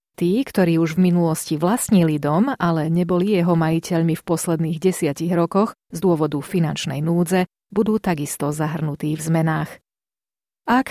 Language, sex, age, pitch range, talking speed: Slovak, female, 30-49, 165-200 Hz, 140 wpm